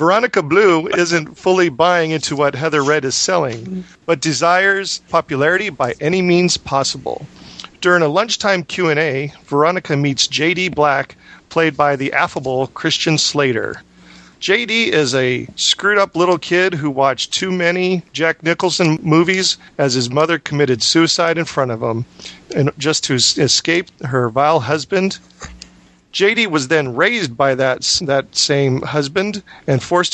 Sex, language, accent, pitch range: male, English, American, 140-175 Hz